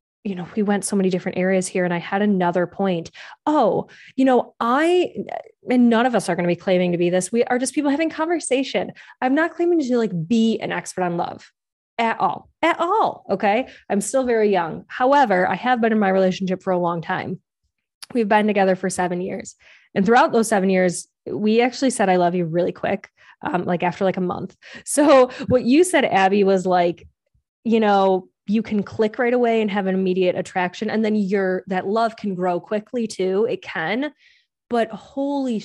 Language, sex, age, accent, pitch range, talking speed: English, female, 20-39, American, 180-240 Hz, 205 wpm